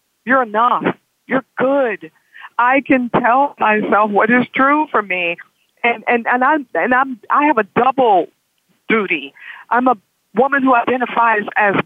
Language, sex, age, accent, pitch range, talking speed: English, female, 50-69, American, 205-265 Hz, 150 wpm